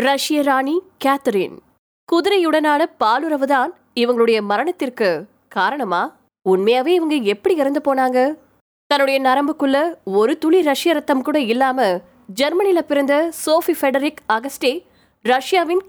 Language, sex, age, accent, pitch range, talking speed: Tamil, female, 20-39, native, 245-315 Hz, 40 wpm